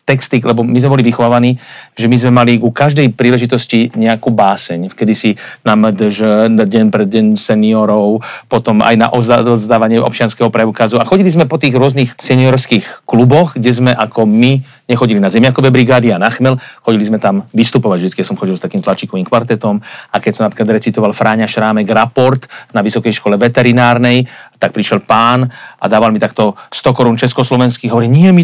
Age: 40-59